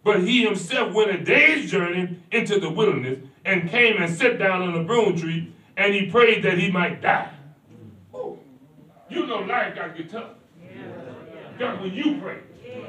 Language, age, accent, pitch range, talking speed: English, 40-59, American, 170-230 Hz, 175 wpm